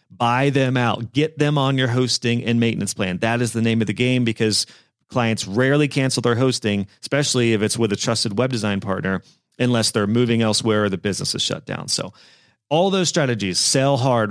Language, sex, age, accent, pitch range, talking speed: English, male, 30-49, American, 110-140 Hz, 205 wpm